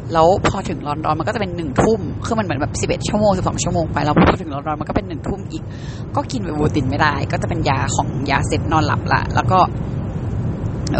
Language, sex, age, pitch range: Thai, female, 20-39, 125-155 Hz